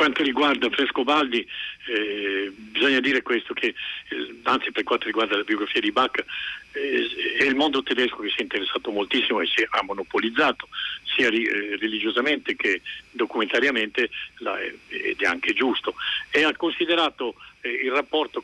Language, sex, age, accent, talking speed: Italian, male, 50-69, native, 155 wpm